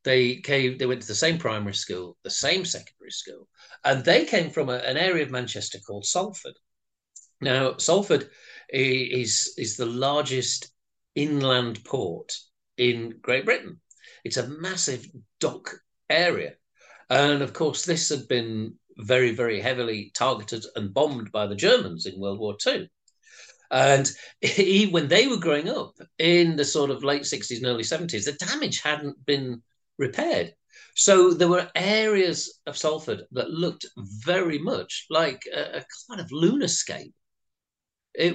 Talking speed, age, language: 155 wpm, 50-69, English